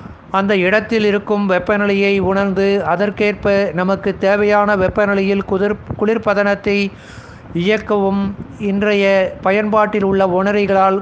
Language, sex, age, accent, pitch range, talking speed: Tamil, male, 60-79, native, 190-205 Hz, 85 wpm